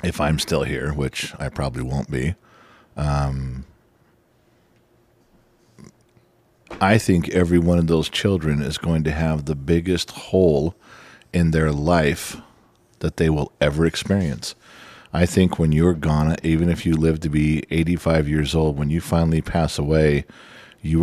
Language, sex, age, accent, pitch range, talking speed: English, male, 50-69, American, 80-95 Hz, 150 wpm